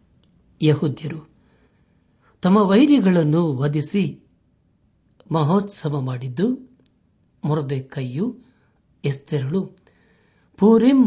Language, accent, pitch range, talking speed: Kannada, native, 135-180 Hz, 55 wpm